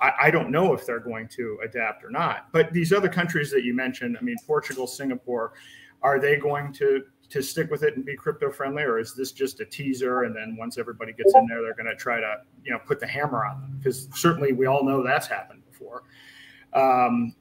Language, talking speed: English, 230 wpm